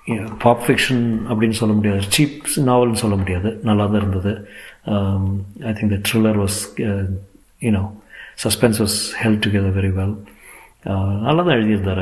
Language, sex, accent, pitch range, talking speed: Tamil, male, native, 100-120 Hz, 150 wpm